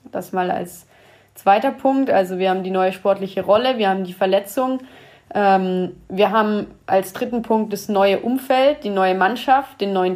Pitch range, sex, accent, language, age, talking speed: 190-225 Hz, female, German, German, 20-39, 175 wpm